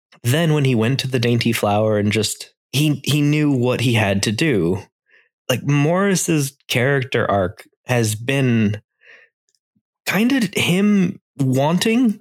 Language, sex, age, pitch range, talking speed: English, male, 20-39, 115-155 Hz, 135 wpm